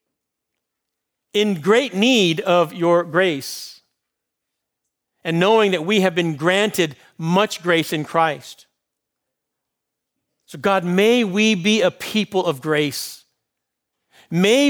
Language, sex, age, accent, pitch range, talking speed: English, male, 50-69, American, 160-215 Hz, 110 wpm